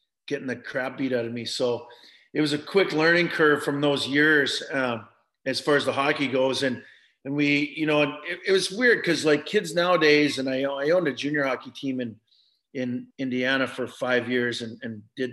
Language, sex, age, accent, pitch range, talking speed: English, male, 40-59, American, 125-150 Hz, 210 wpm